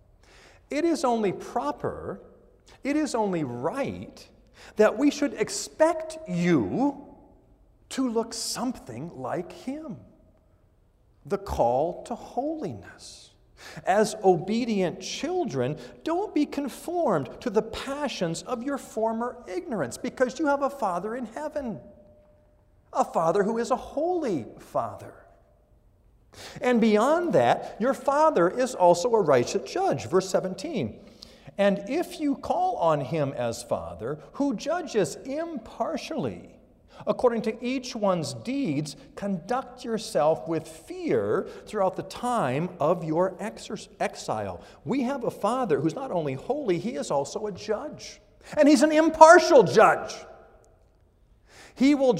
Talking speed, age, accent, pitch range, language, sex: 125 wpm, 50-69, American, 185-290 Hz, English, male